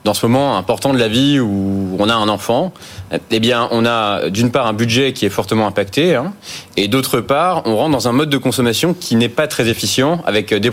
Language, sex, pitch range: French, male, 115-150 Hz